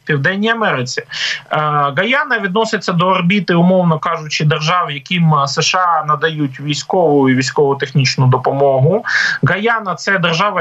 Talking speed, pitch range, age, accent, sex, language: 115 wpm, 155-210 Hz, 30-49, native, male, Ukrainian